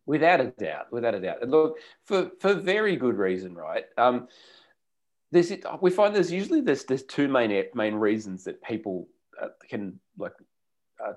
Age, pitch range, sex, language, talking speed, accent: 30-49, 105-150 Hz, male, English, 165 wpm, Australian